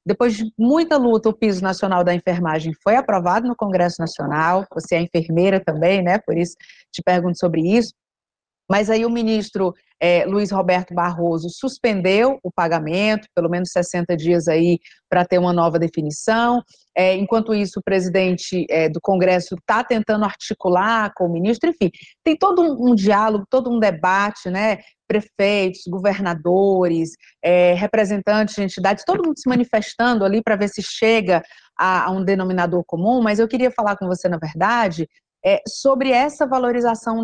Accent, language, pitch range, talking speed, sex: Brazilian, Portuguese, 180-225 Hz, 155 wpm, female